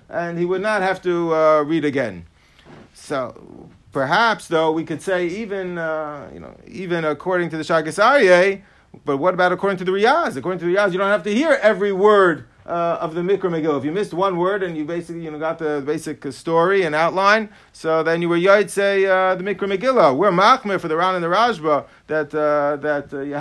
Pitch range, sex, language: 155-195 Hz, male, English